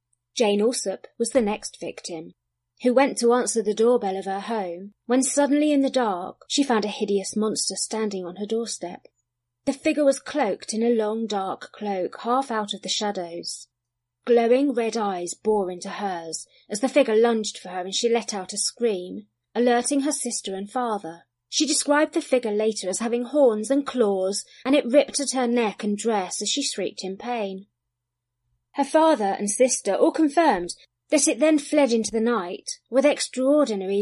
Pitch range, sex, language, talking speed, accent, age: 190-255 Hz, female, English, 185 wpm, British, 30-49